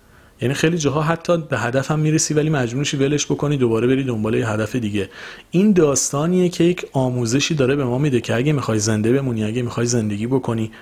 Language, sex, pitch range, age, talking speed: Persian, male, 110-150 Hz, 40-59, 200 wpm